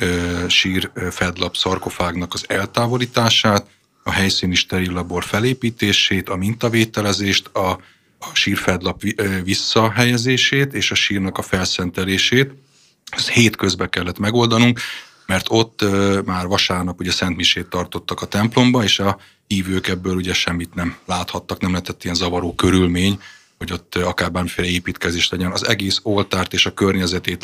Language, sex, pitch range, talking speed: Hungarian, male, 90-105 Hz, 125 wpm